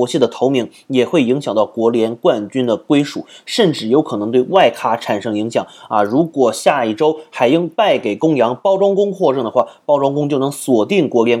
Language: Chinese